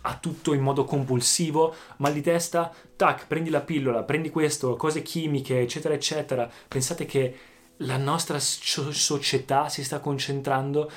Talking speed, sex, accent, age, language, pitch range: 140 wpm, male, native, 20-39, Italian, 120-150 Hz